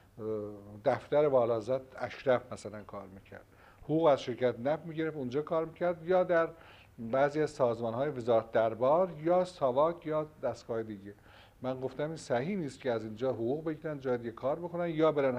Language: Persian